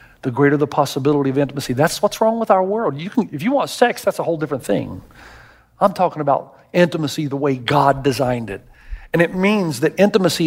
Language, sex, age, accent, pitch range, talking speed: English, male, 50-69, American, 145-220 Hz, 200 wpm